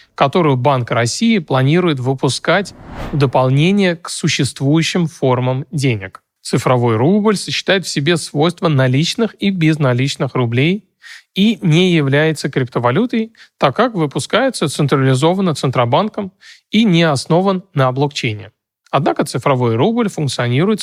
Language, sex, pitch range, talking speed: Russian, male, 130-180 Hz, 110 wpm